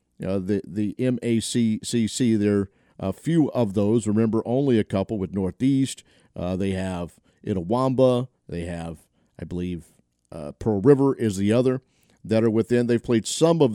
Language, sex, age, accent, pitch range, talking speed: English, male, 50-69, American, 100-130 Hz, 160 wpm